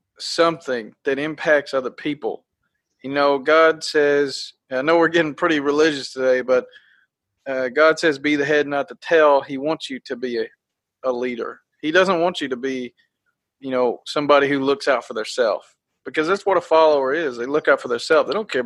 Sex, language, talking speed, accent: male, English, 205 wpm, American